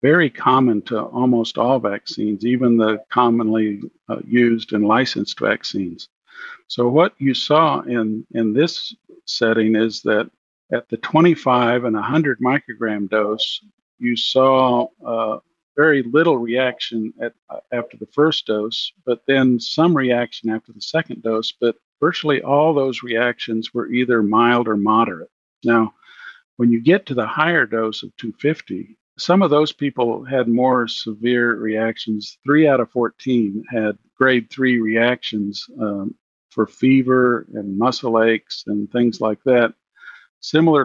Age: 50-69